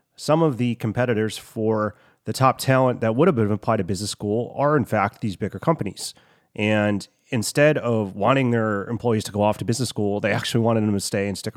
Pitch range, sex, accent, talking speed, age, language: 105-130 Hz, male, American, 220 wpm, 30-49, English